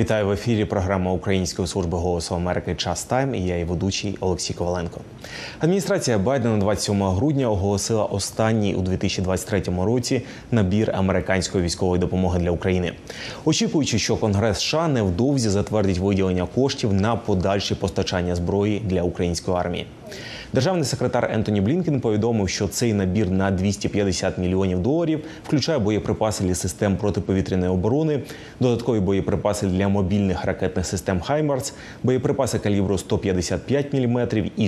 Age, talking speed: 20-39, 130 wpm